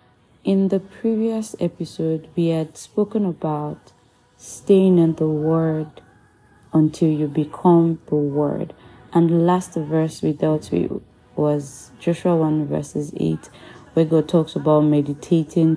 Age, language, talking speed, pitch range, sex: 20-39, English, 130 wpm, 145-170 Hz, female